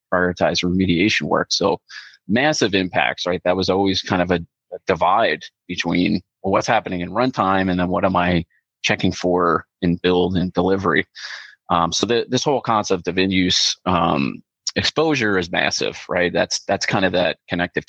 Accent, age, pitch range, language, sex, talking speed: American, 30-49, 90-120 Hz, English, male, 170 wpm